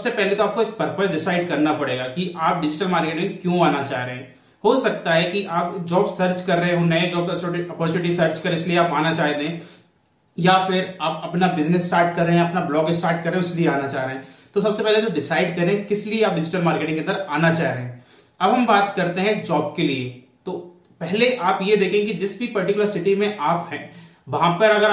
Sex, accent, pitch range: male, native, 160-195 Hz